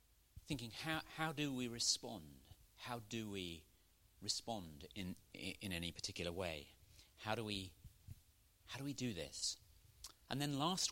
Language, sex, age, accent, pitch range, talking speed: English, male, 40-59, British, 85-115 Hz, 150 wpm